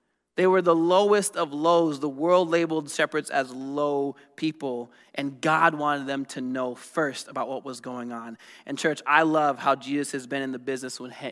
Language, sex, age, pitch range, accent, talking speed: English, male, 20-39, 140-175 Hz, American, 190 wpm